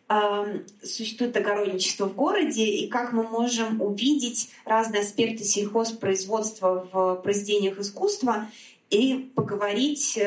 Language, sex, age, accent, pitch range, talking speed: Russian, female, 20-39, native, 195-245 Hz, 100 wpm